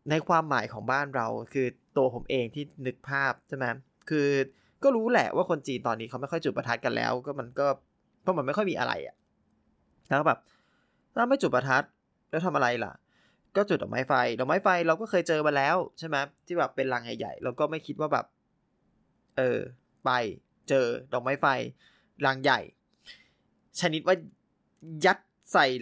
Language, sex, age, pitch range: Thai, male, 20-39, 125-155 Hz